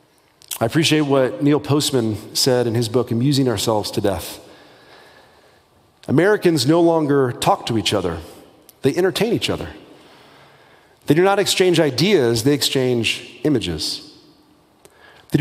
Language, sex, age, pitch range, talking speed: English, male, 40-59, 130-175 Hz, 130 wpm